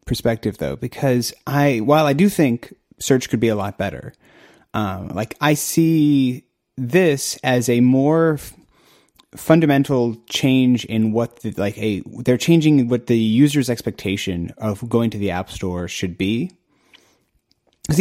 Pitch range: 100-130 Hz